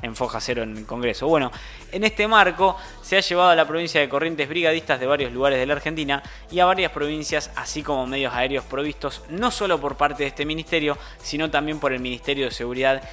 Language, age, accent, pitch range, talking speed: Spanish, 20-39, Argentinian, 135-170 Hz, 220 wpm